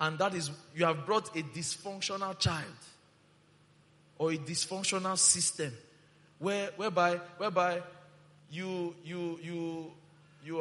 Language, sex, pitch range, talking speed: English, male, 150-180 Hz, 105 wpm